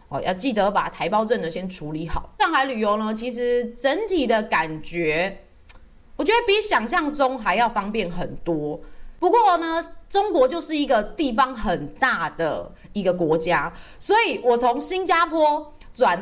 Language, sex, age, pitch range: Chinese, female, 20-39, 175-255 Hz